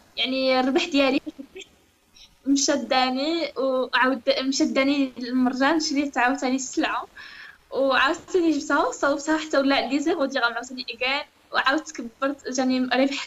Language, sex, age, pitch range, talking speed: Arabic, female, 10-29, 260-305 Hz, 115 wpm